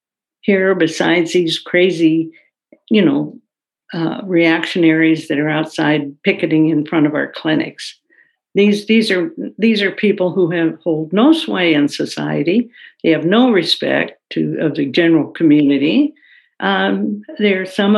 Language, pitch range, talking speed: English, 165-230 Hz, 145 wpm